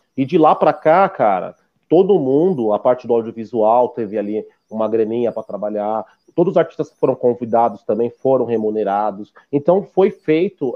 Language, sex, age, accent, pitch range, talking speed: Portuguese, male, 30-49, Brazilian, 115-165 Hz, 165 wpm